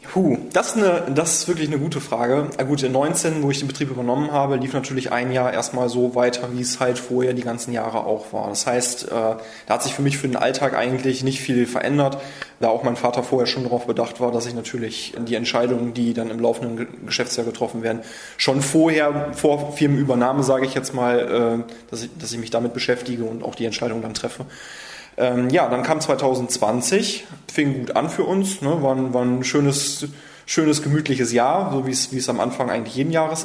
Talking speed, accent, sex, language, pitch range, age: 200 wpm, German, male, German, 120-140 Hz, 20-39